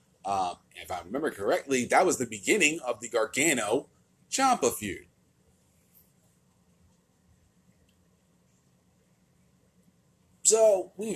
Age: 30-49